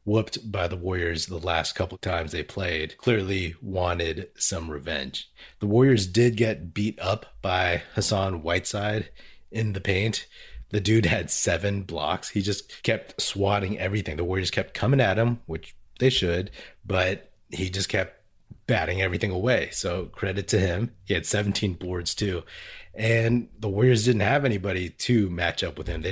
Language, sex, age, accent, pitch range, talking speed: English, male, 30-49, American, 85-105 Hz, 170 wpm